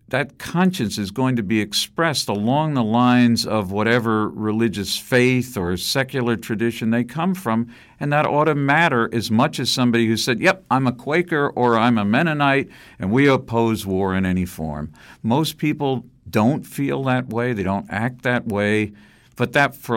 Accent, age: American, 50-69